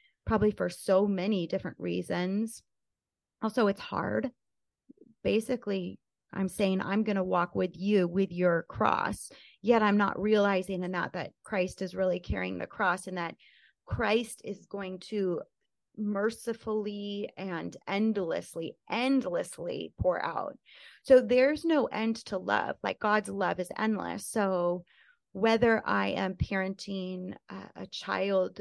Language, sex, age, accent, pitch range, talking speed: English, female, 30-49, American, 180-215 Hz, 135 wpm